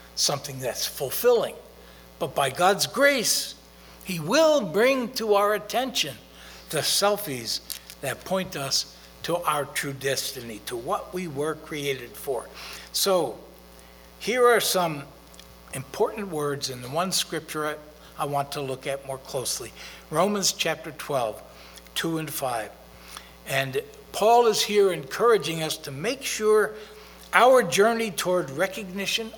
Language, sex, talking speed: English, male, 135 wpm